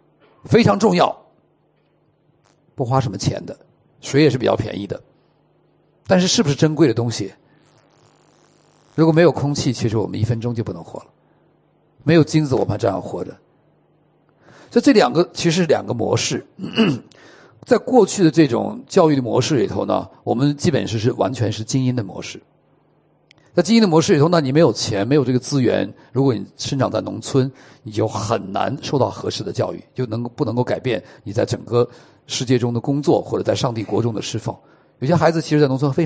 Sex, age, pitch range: male, 50-69, 115-160 Hz